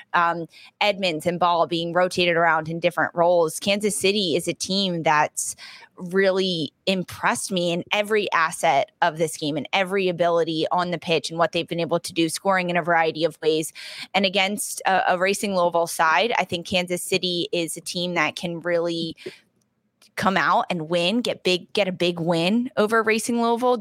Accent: American